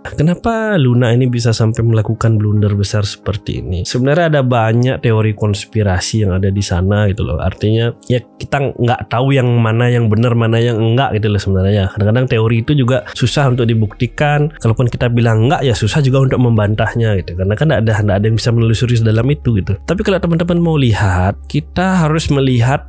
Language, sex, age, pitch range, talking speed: Indonesian, male, 20-39, 105-140 Hz, 190 wpm